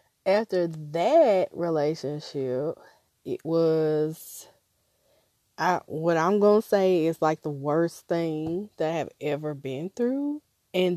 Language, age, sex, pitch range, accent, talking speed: English, 20-39, female, 155-195 Hz, American, 115 wpm